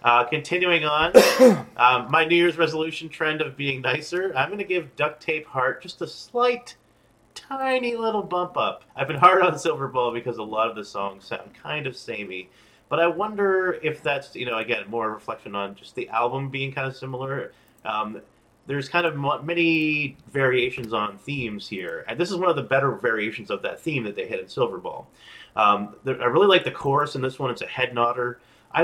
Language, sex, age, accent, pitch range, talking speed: English, male, 30-49, American, 120-170 Hz, 210 wpm